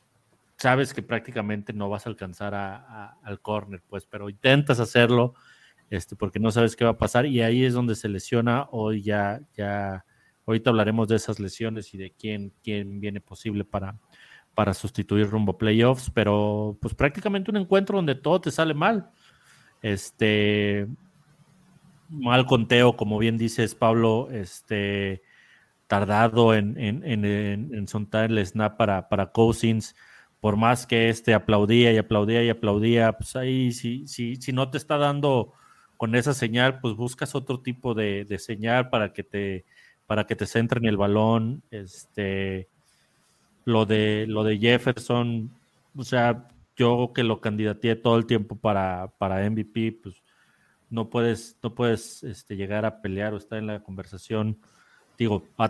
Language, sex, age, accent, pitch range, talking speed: Spanish, male, 40-59, Mexican, 105-120 Hz, 160 wpm